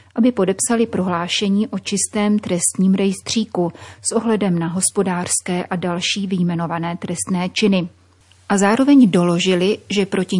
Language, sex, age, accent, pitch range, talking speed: Czech, female, 30-49, native, 180-200 Hz, 120 wpm